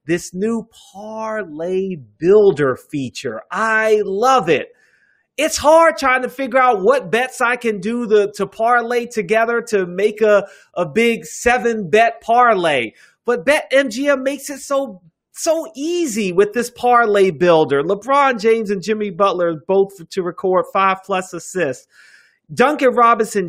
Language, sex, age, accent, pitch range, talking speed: English, male, 30-49, American, 185-240 Hz, 135 wpm